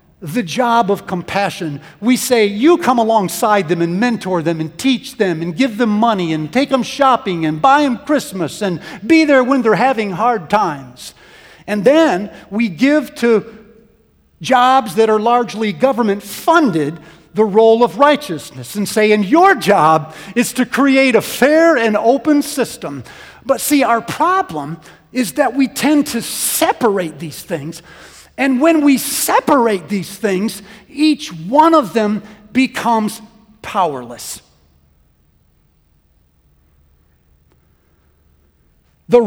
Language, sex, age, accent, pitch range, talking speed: English, male, 50-69, American, 175-270 Hz, 135 wpm